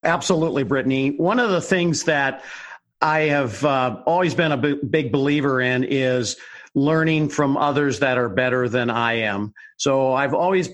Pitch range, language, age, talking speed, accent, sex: 130-155 Hz, English, 50-69, 170 wpm, American, male